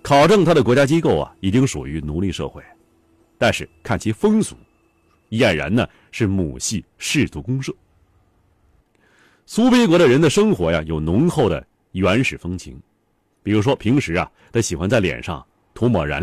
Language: Chinese